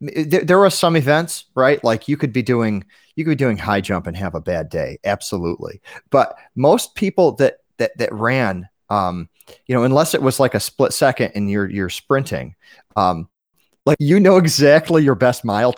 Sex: male